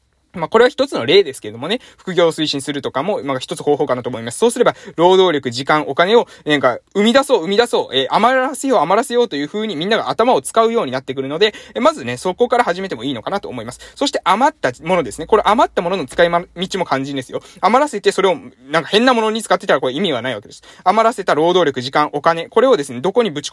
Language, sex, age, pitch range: Japanese, male, 20-39, 140-215 Hz